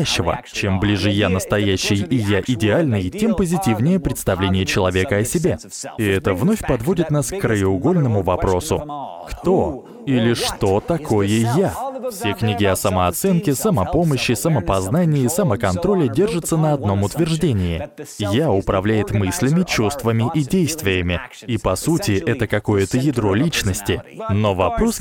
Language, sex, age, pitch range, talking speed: Russian, male, 20-39, 100-155 Hz, 125 wpm